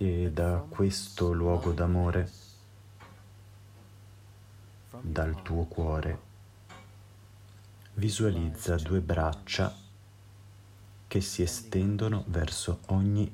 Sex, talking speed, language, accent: male, 70 wpm, Italian, native